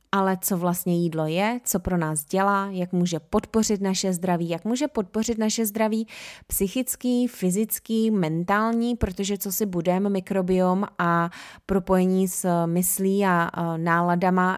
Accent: native